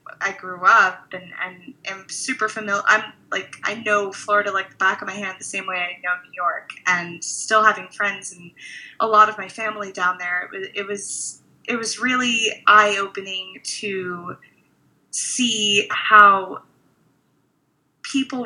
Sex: female